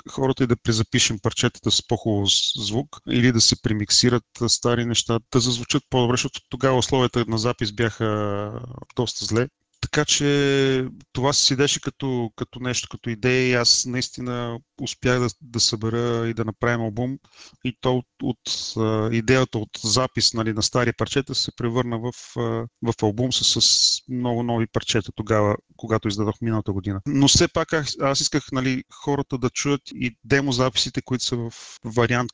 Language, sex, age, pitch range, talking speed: Bulgarian, male, 30-49, 110-130 Hz, 165 wpm